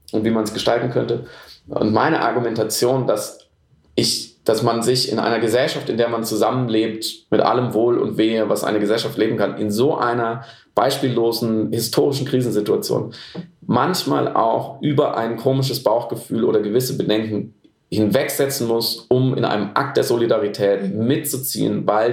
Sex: male